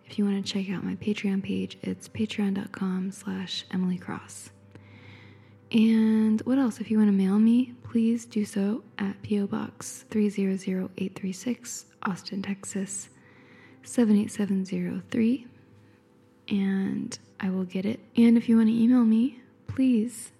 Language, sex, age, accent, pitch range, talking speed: English, female, 10-29, American, 190-225 Hz, 130 wpm